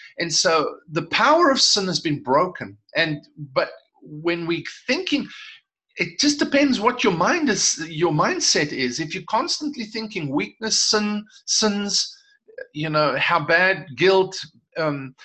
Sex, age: male, 50-69